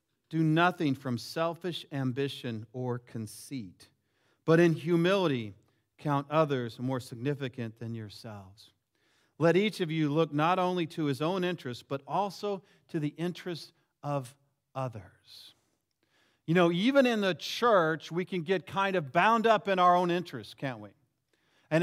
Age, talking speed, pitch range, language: 40-59, 150 wpm, 130-180 Hz, English